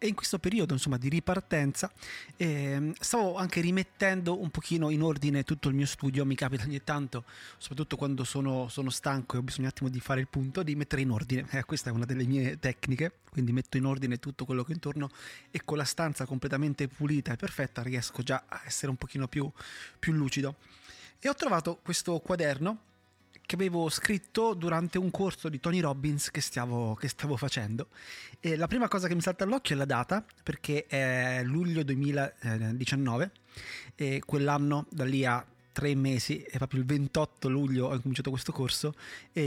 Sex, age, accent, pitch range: male, 30-49, native, 130-165 Hz